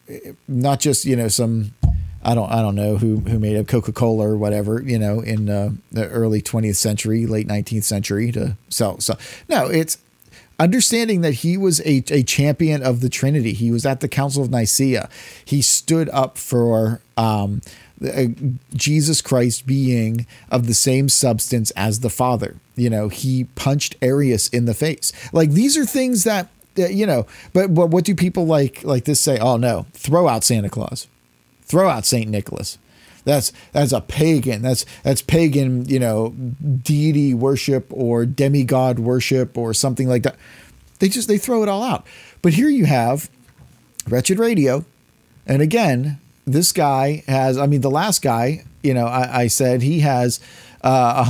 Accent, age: American, 40-59